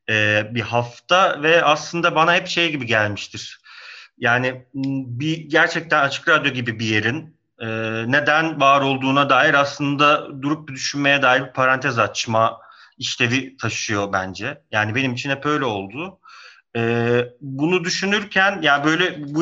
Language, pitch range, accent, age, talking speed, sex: Turkish, 130-160 Hz, native, 40-59, 140 wpm, male